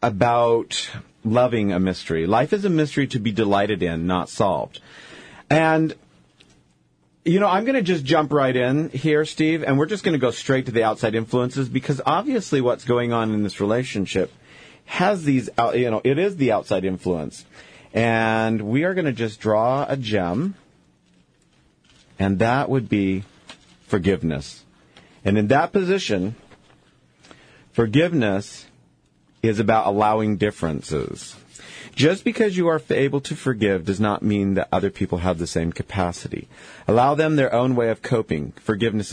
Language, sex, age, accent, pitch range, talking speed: English, male, 40-59, American, 100-145 Hz, 155 wpm